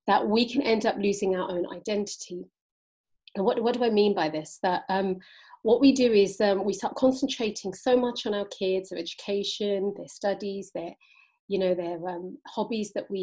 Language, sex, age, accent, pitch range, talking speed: English, female, 40-59, British, 195-250 Hz, 200 wpm